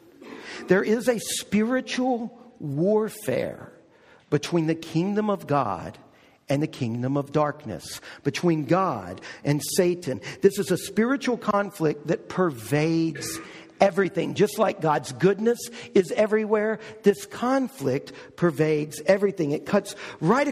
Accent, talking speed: American, 115 wpm